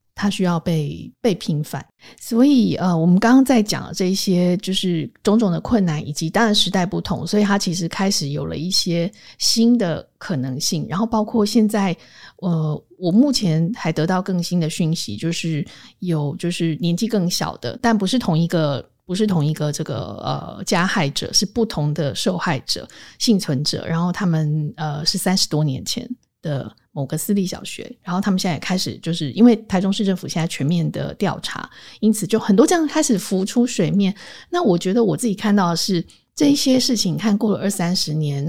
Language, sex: Chinese, female